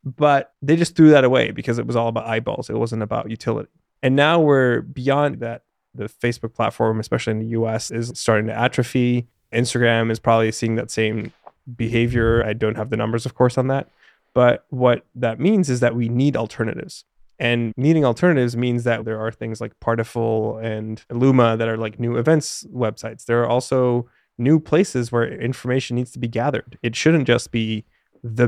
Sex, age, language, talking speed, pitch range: male, 20-39, English, 190 wpm, 115-125 Hz